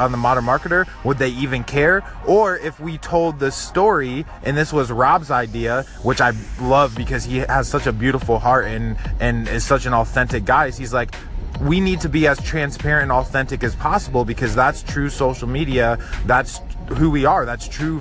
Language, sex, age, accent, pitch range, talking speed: English, male, 20-39, American, 125-150 Hz, 195 wpm